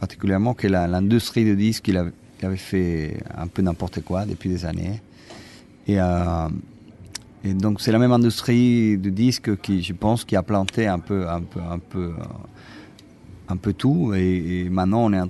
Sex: male